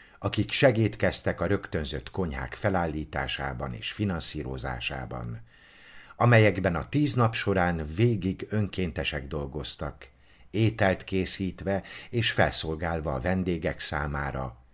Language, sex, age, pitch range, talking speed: Hungarian, male, 50-69, 70-105 Hz, 95 wpm